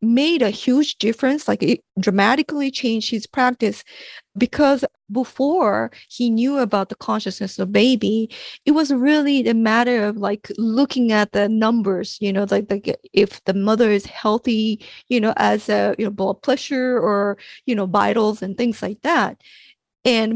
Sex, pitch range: female, 205-255 Hz